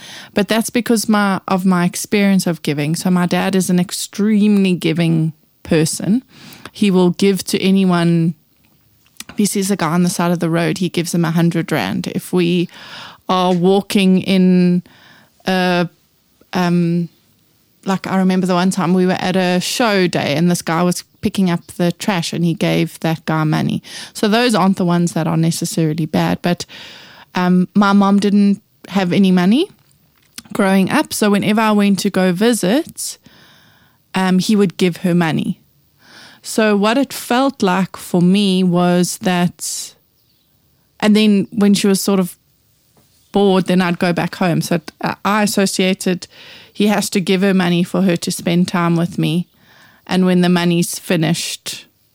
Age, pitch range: 20-39, 175-200 Hz